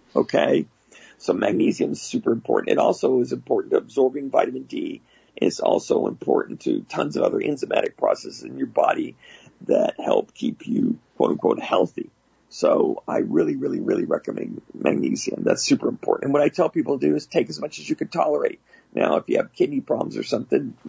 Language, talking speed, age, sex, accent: English, 190 wpm, 50-69, male, American